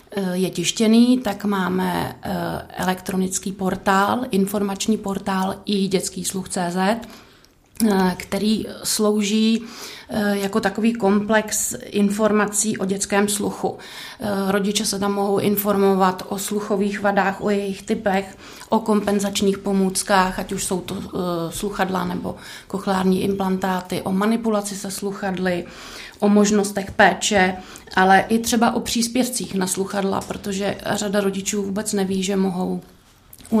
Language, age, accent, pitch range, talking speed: Czech, 30-49, native, 190-205 Hz, 115 wpm